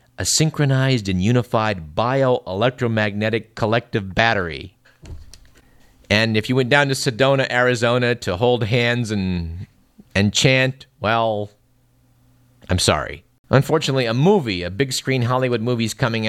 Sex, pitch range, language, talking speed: male, 100-125 Hz, English, 120 wpm